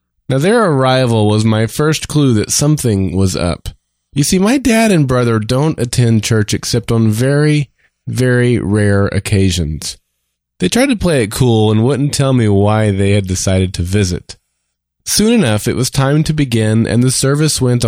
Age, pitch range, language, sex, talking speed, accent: 20-39, 100-135 Hz, English, male, 180 wpm, American